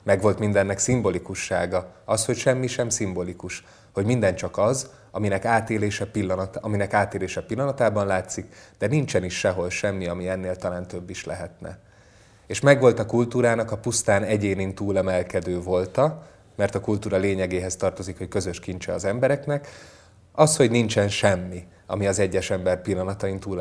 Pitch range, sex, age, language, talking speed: 95-110 Hz, male, 20-39, Hungarian, 150 wpm